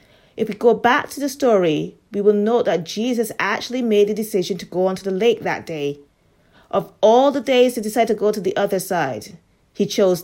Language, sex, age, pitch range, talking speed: English, female, 30-49, 190-235 Hz, 215 wpm